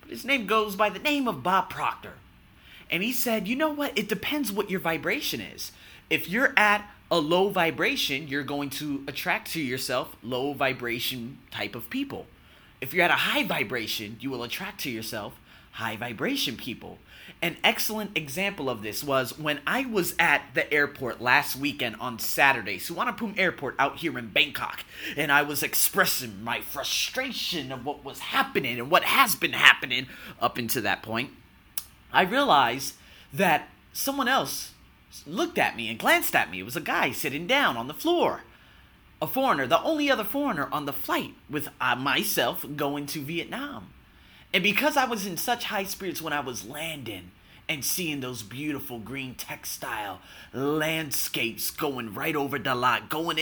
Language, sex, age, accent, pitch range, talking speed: English, male, 30-49, American, 130-200 Hz, 170 wpm